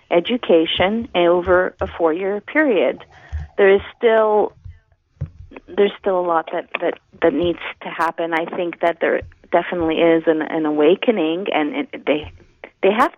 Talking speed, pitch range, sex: 145 wpm, 160-190 Hz, female